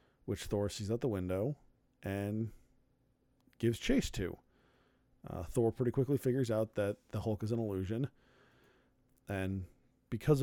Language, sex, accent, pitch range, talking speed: English, male, American, 105-135 Hz, 140 wpm